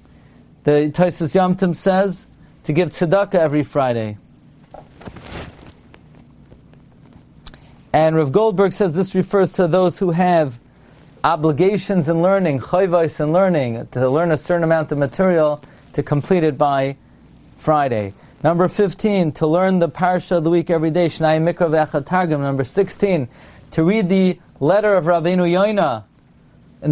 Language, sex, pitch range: English, male, 150-190 Hz